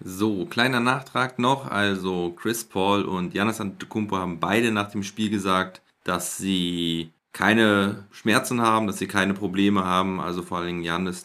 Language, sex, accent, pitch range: German, male, German, 90-105 Hz